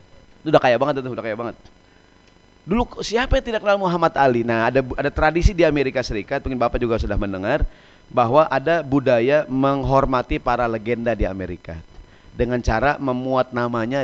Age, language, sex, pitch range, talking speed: 30-49, Indonesian, male, 110-145 Hz, 160 wpm